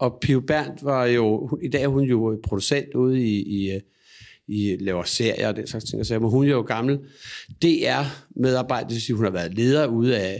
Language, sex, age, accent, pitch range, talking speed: Danish, male, 60-79, native, 115-145 Hz, 200 wpm